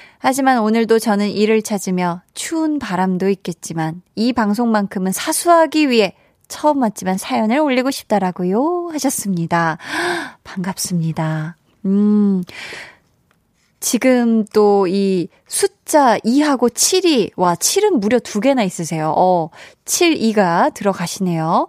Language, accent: Korean, native